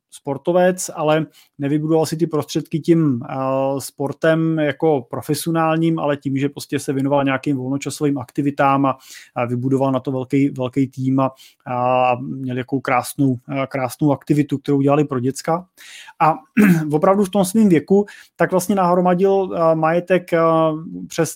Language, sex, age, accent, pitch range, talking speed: Czech, male, 30-49, native, 140-180 Hz, 130 wpm